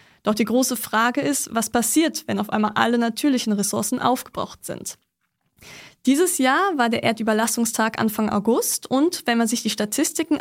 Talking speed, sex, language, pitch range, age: 160 wpm, female, German, 220-260 Hz, 10-29